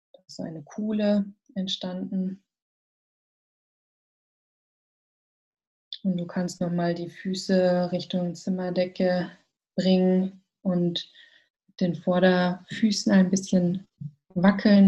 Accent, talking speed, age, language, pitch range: German, 75 wpm, 20-39, German, 180-200 Hz